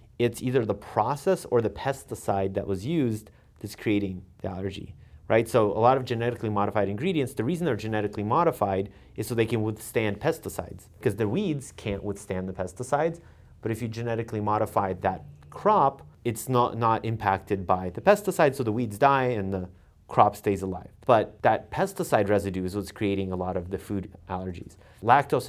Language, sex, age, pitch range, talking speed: English, male, 30-49, 100-125 Hz, 180 wpm